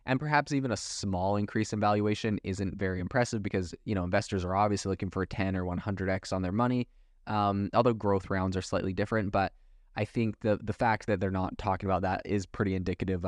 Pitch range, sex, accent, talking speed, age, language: 95-110 Hz, male, American, 215 wpm, 20-39, English